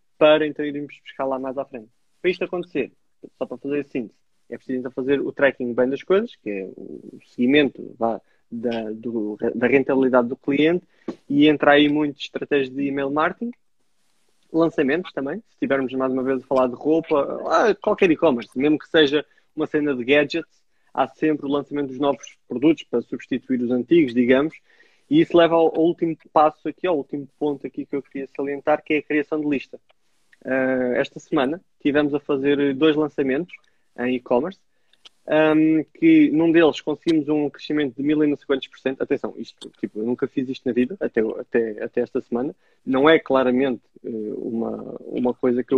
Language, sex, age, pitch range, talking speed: Portuguese, male, 20-39, 130-155 Hz, 180 wpm